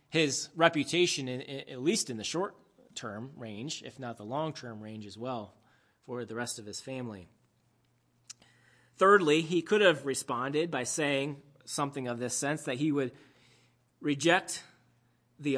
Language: English